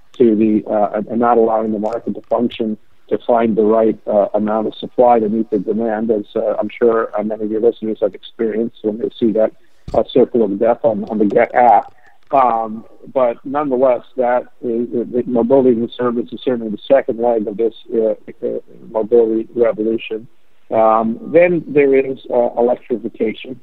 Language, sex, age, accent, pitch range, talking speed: English, male, 50-69, American, 115-130 Hz, 180 wpm